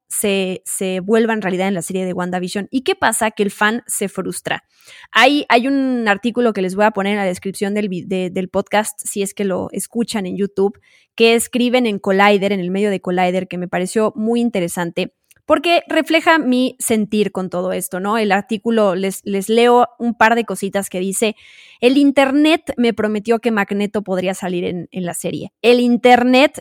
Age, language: 20-39, Spanish